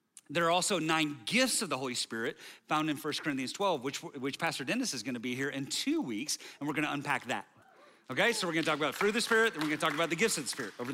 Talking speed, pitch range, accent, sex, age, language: 275 wpm, 150-205 Hz, American, male, 30-49, English